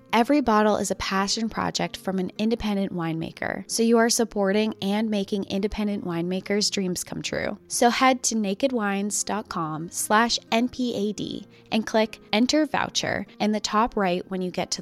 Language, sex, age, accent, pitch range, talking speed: English, female, 20-39, American, 185-230 Hz, 155 wpm